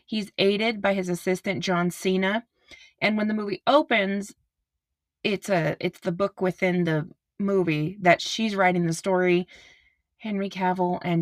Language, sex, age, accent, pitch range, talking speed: English, female, 20-39, American, 175-235 Hz, 150 wpm